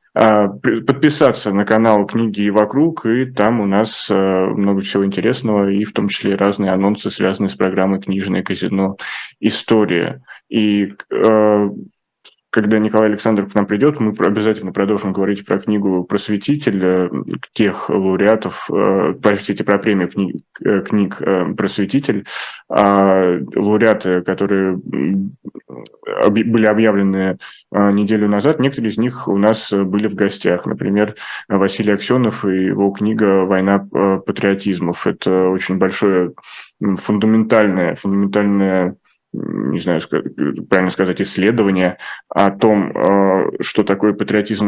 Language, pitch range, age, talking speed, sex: Russian, 95-105 Hz, 20-39, 110 wpm, male